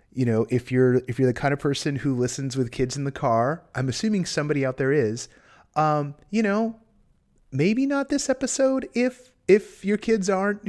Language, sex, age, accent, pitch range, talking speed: English, male, 30-49, American, 115-155 Hz, 195 wpm